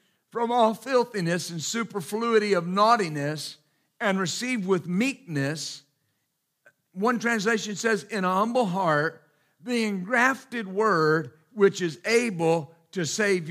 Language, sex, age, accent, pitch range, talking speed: English, male, 50-69, American, 170-225 Hz, 115 wpm